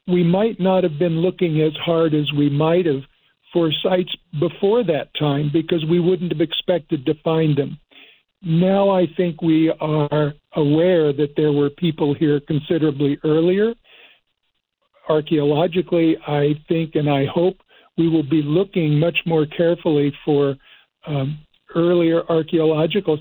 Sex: male